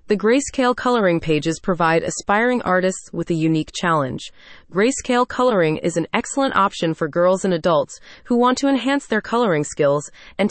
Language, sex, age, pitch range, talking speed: English, female, 30-49, 170-230 Hz, 165 wpm